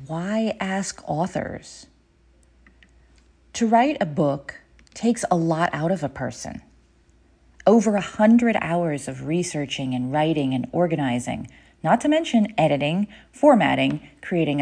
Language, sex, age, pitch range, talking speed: English, female, 40-59, 130-200 Hz, 125 wpm